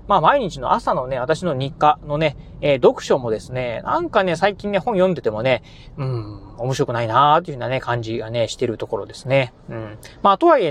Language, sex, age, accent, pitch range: Japanese, male, 30-49, native, 130-185 Hz